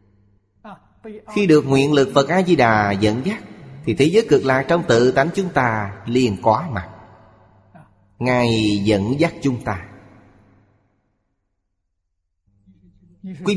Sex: male